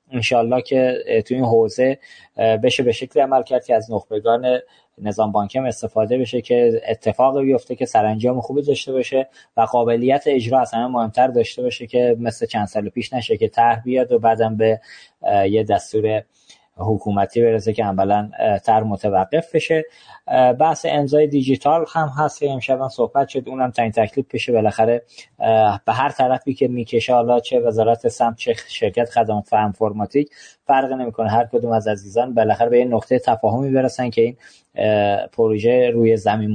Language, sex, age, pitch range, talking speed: Persian, male, 20-39, 110-135 Hz, 165 wpm